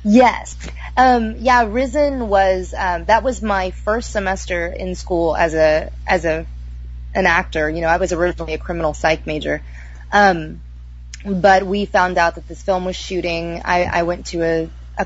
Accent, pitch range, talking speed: American, 155-190 Hz, 175 wpm